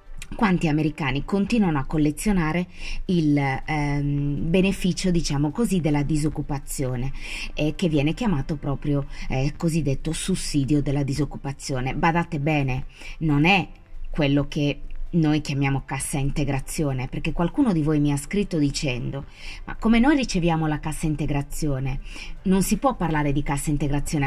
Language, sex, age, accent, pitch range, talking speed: Italian, female, 20-39, native, 145-185 Hz, 135 wpm